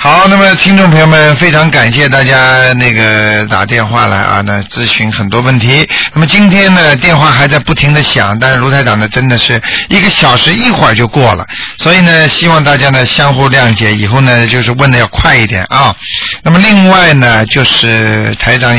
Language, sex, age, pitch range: Chinese, male, 50-69, 115-155 Hz